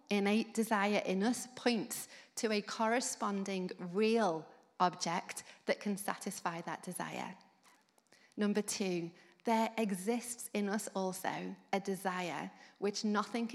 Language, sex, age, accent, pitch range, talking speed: English, female, 30-49, British, 190-225 Hz, 115 wpm